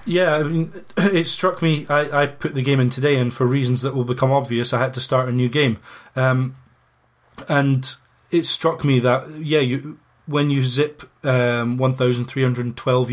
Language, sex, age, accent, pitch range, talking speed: English, male, 20-39, British, 120-140 Hz, 185 wpm